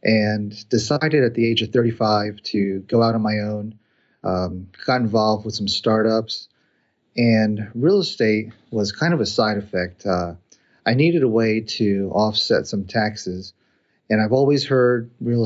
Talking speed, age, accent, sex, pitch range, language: 165 wpm, 40-59, American, male, 100-115 Hz, English